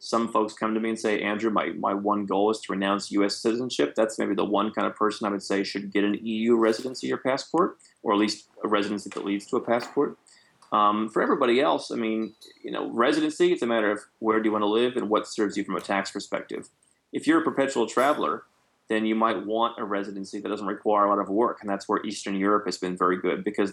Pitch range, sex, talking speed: 95-110 Hz, male, 250 wpm